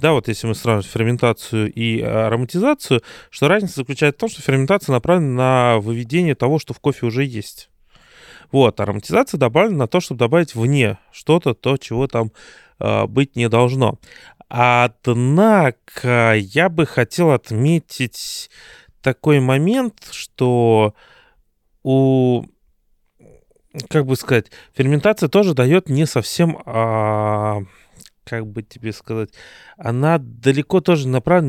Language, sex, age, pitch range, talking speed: Russian, male, 30-49, 115-145 Hz, 130 wpm